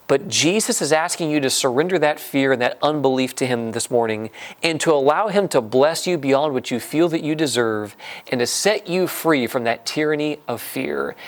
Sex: male